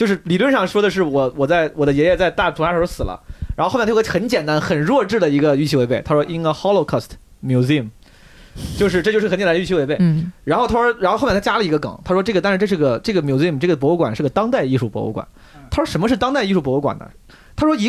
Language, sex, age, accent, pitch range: Chinese, male, 20-39, native, 140-200 Hz